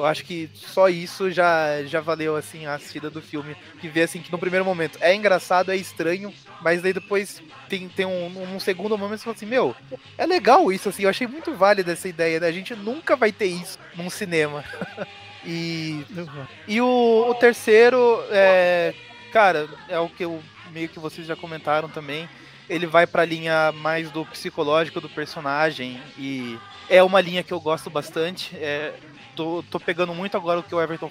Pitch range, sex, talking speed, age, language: 150-185 Hz, male, 195 wpm, 20-39, Portuguese